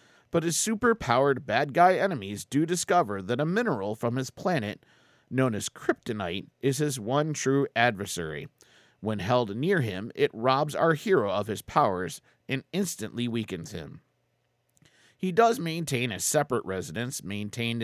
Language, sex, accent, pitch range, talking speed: English, male, American, 115-160 Hz, 145 wpm